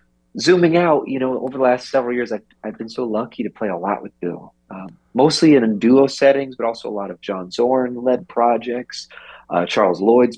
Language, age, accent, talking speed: English, 30-49, American, 220 wpm